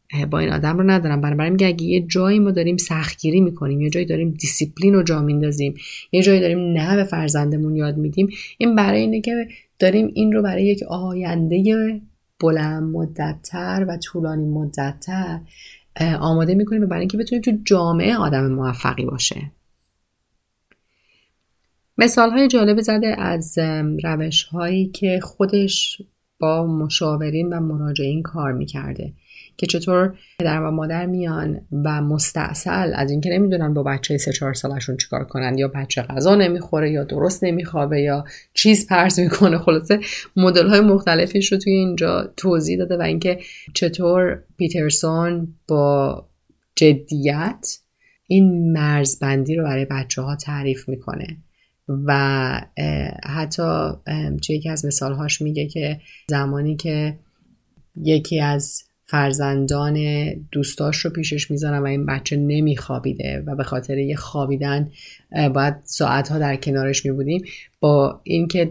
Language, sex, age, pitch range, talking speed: Persian, female, 30-49, 145-180 Hz, 135 wpm